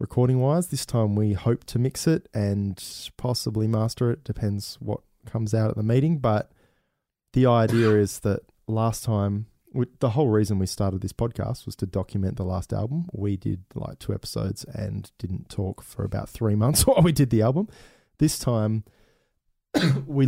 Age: 20-39